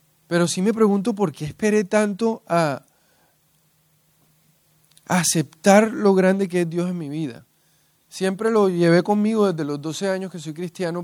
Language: English